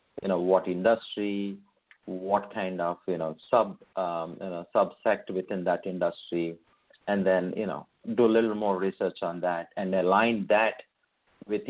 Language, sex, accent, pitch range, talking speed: English, male, Indian, 90-115 Hz, 165 wpm